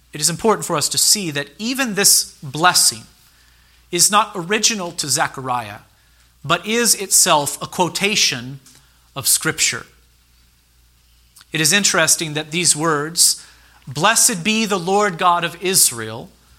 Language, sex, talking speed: English, male, 130 wpm